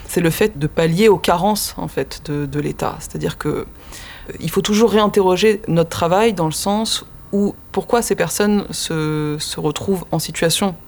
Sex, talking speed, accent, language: female, 175 wpm, French, French